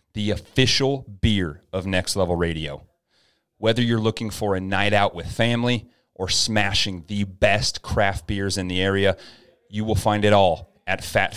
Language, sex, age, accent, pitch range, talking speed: English, male, 30-49, American, 95-115 Hz, 170 wpm